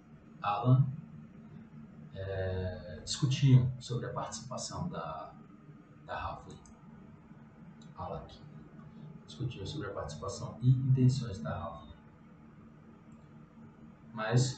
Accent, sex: Brazilian, male